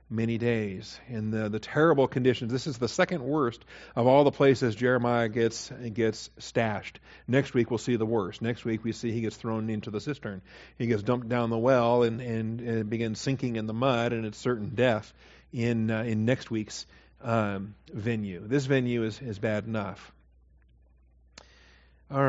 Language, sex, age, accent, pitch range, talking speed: English, male, 50-69, American, 115-135 Hz, 185 wpm